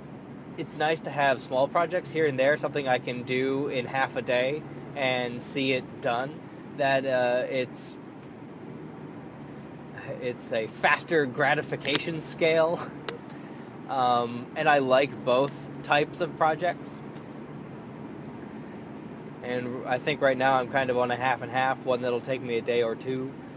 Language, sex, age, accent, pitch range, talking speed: English, male, 20-39, American, 125-155 Hz, 150 wpm